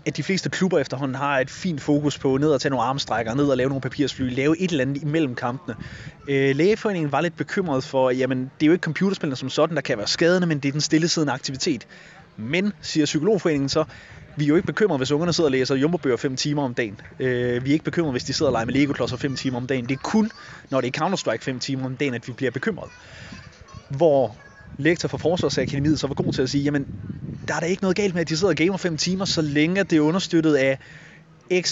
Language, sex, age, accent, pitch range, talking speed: Danish, male, 30-49, native, 130-165 Hz, 250 wpm